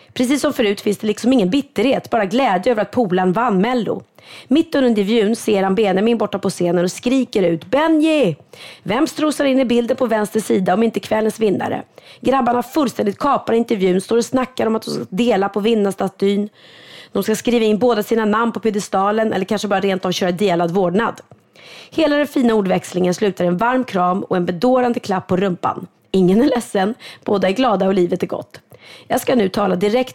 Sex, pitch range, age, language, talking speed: female, 190-245 Hz, 30-49, Swedish, 195 wpm